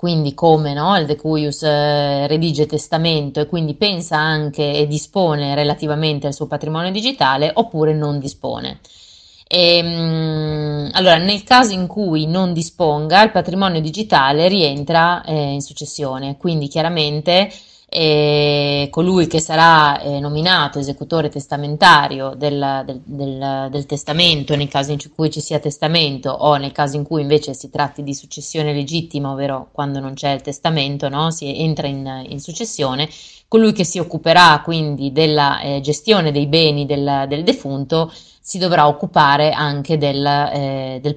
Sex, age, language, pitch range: female, 20-39, Italian, 145-165 Hz